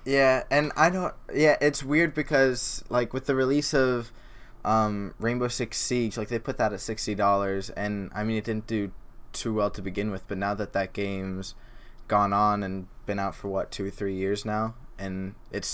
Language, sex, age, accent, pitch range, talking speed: English, male, 20-39, American, 100-120 Hz, 200 wpm